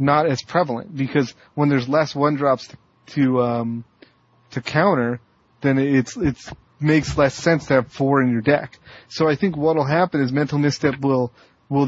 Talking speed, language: 180 wpm, English